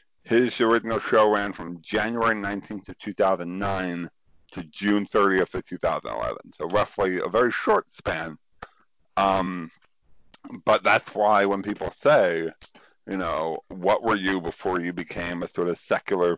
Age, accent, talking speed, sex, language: 50-69, American, 145 wpm, male, English